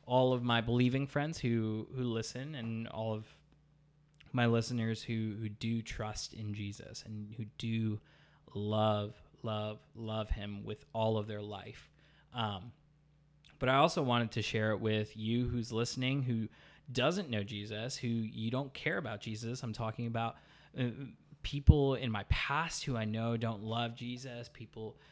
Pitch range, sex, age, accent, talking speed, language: 110-135 Hz, male, 20-39, American, 160 wpm, English